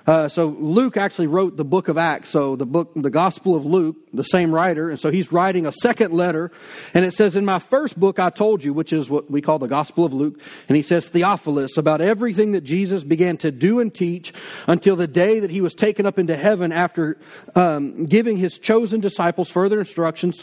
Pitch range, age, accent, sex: 170-210 Hz, 40-59, American, male